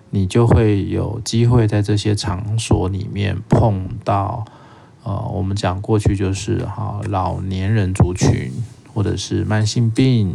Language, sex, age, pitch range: Chinese, male, 20-39, 95-115 Hz